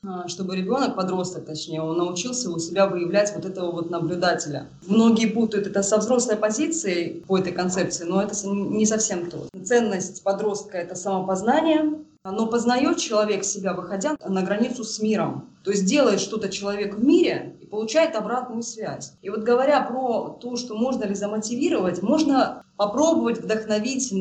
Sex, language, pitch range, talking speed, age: female, Russian, 180-225 Hz, 155 wpm, 20-39